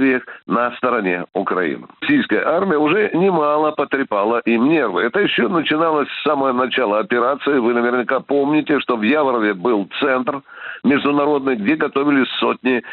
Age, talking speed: 60-79, 130 wpm